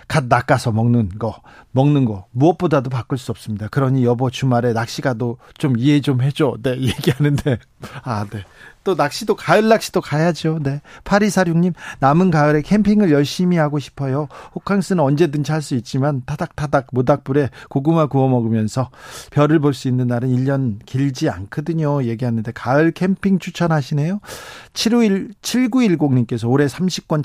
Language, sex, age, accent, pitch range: Korean, male, 40-59, native, 130-170 Hz